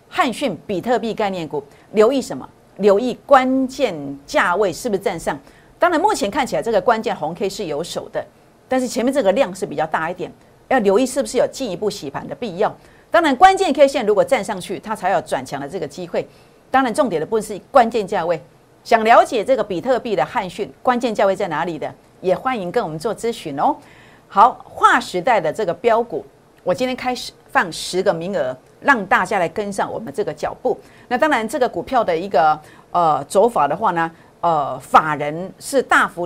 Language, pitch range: Chinese, 180-255 Hz